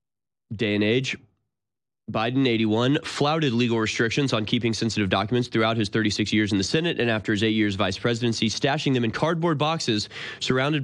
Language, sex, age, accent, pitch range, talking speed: English, male, 20-39, American, 110-145 Hz, 175 wpm